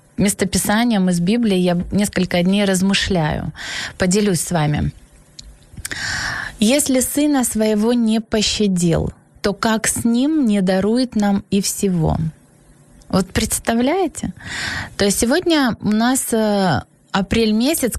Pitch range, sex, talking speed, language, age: 185-230 Hz, female, 110 wpm, Ukrainian, 20-39